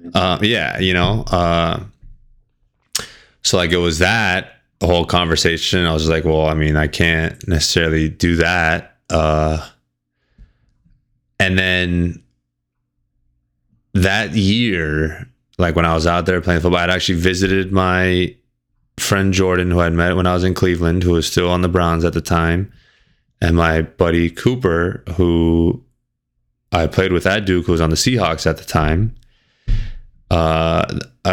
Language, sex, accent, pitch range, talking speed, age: English, male, American, 85-105 Hz, 150 wpm, 20-39